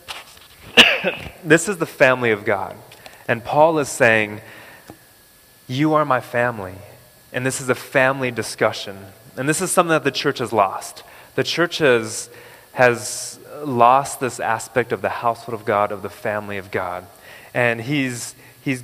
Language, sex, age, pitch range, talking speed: English, male, 20-39, 115-150 Hz, 155 wpm